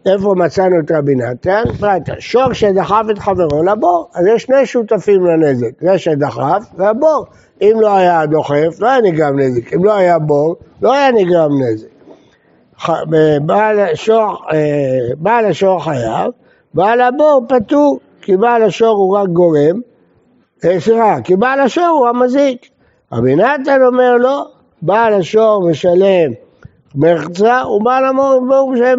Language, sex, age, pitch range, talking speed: Hebrew, male, 60-79, 170-240 Hz, 130 wpm